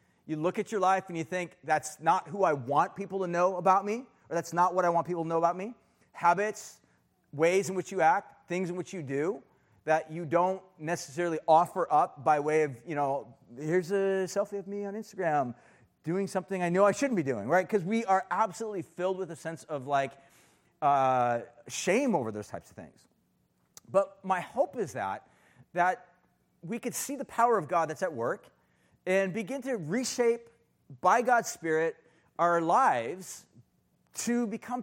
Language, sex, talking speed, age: English, male, 190 wpm, 30-49